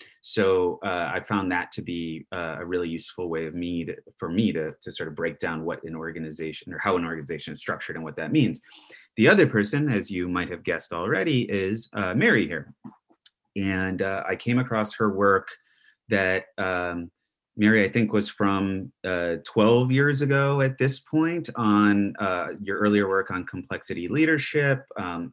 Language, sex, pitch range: English, male, 90-115 Hz